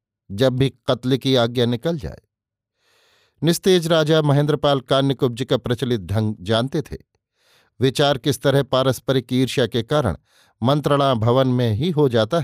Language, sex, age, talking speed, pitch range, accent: Hindi, male, 50-69, 140 wpm, 115-145 Hz, native